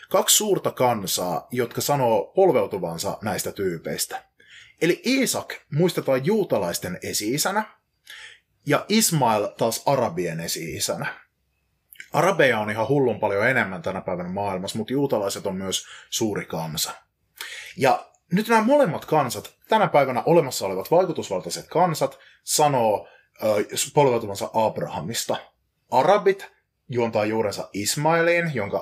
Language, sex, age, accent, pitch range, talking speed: Finnish, male, 30-49, native, 105-175 Hz, 110 wpm